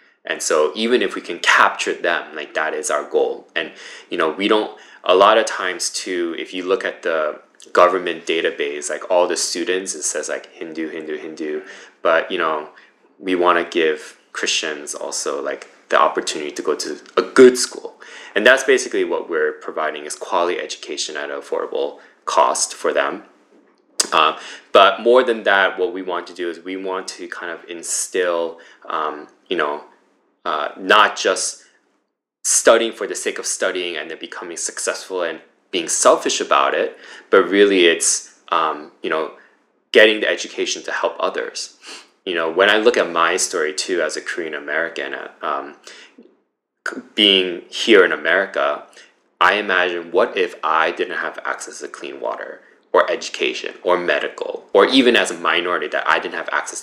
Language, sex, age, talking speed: English, male, 20-39, 175 wpm